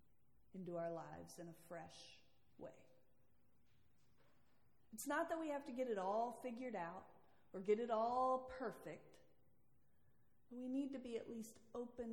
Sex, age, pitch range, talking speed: female, 40-59, 175-255 Hz, 150 wpm